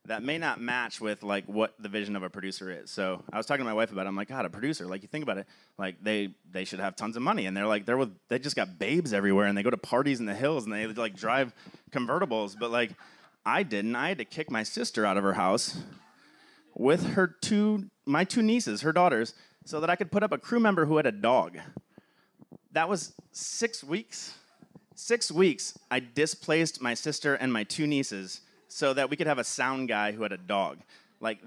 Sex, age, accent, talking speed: male, 30-49, American, 240 wpm